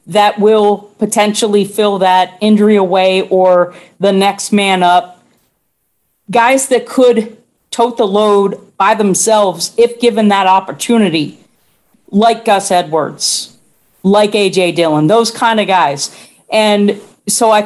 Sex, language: female, English